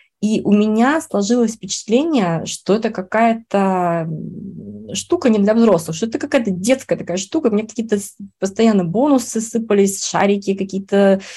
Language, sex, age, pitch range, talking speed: Russian, female, 20-39, 180-230 Hz, 135 wpm